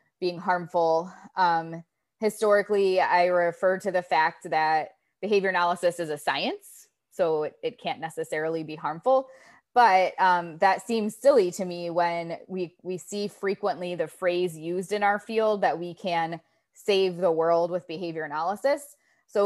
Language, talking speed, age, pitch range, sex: English, 155 wpm, 20-39, 170-205 Hz, female